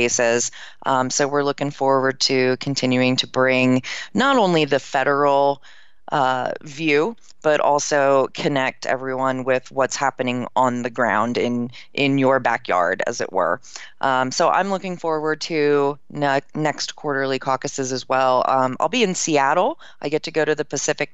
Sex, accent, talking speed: female, American, 155 wpm